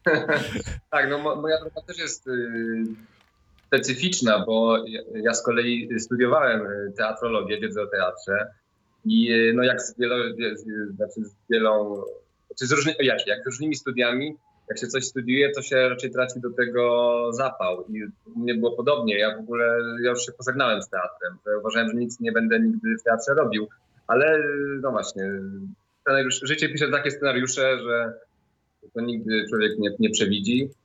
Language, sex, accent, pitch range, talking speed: Polish, male, native, 115-145 Hz, 165 wpm